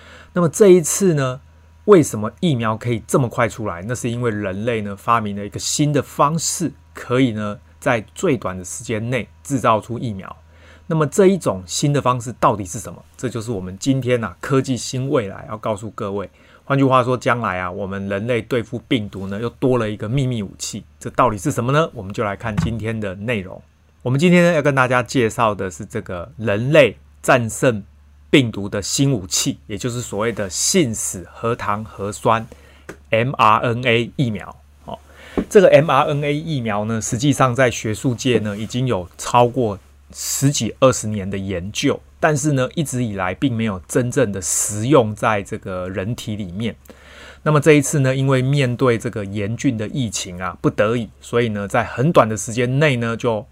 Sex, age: male, 30-49